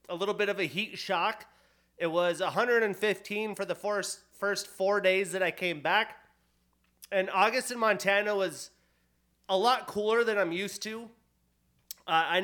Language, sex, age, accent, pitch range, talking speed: English, male, 30-49, American, 175-205 Hz, 160 wpm